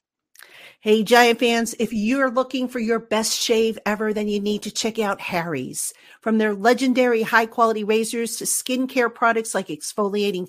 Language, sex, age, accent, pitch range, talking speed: English, female, 50-69, American, 195-240 Hz, 160 wpm